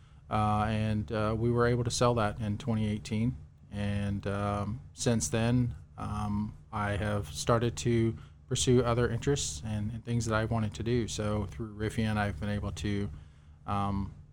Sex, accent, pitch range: male, American, 100-115 Hz